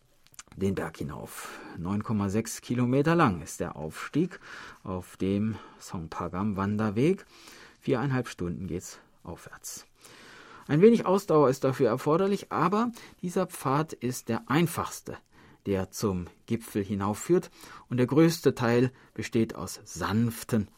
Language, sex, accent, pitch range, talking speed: German, male, German, 95-140 Hz, 115 wpm